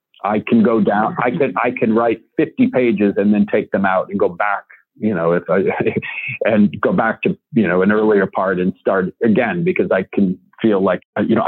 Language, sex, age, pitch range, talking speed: English, male, 40-59, 100-145 Hz, 210 wpm